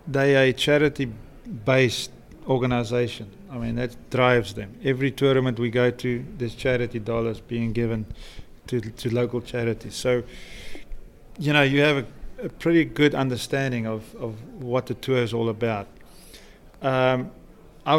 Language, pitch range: English, 120-135 Hz